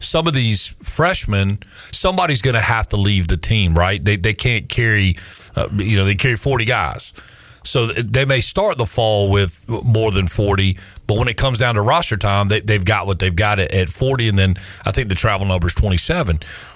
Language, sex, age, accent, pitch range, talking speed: English, male, 40-59, American, 95-115 Hz, 215 wpm